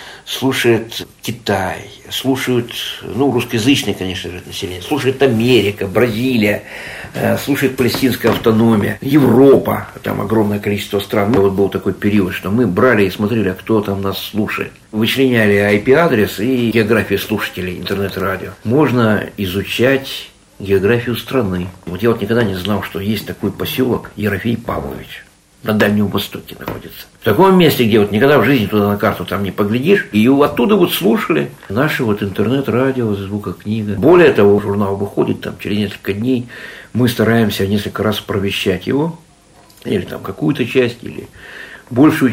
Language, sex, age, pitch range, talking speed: Russian, male, 60-79, 100-125 Hz, 145 wpm